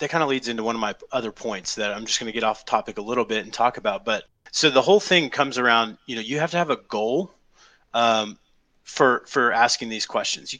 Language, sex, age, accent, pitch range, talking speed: English, male, 30-49, American, 110-135 Hz, 260 wpm